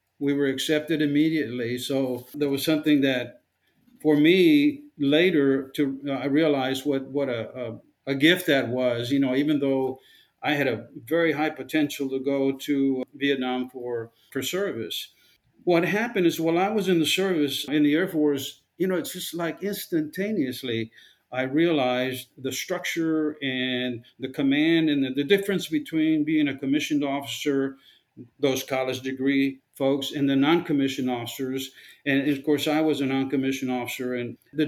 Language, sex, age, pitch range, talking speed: English, male, 50-69, 130-160 Hz, 165 wpm